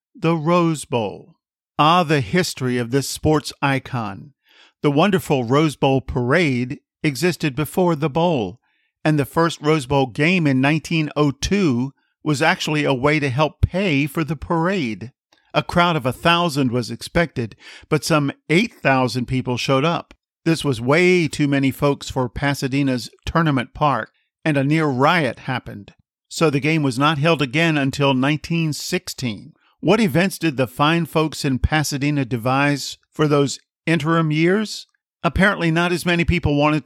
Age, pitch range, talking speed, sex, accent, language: 50-69, 135-165 Hz, 150 wpm, male, American, English